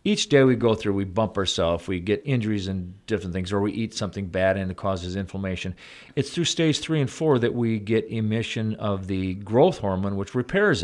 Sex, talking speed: male, 215 wpm